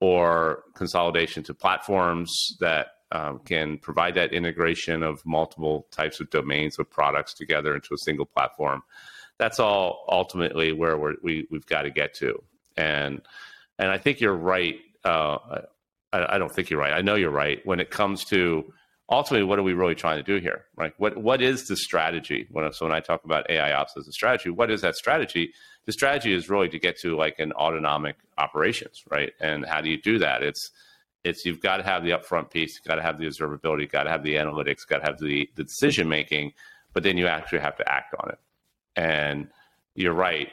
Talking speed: 205 wpm